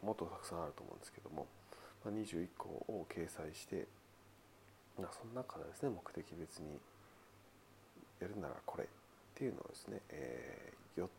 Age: 40-59